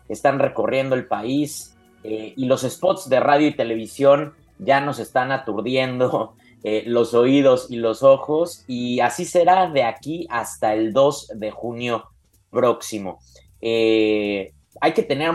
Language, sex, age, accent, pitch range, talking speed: Spanish, male, 30-49, Mexican, 105-130 Hz, 145 wpm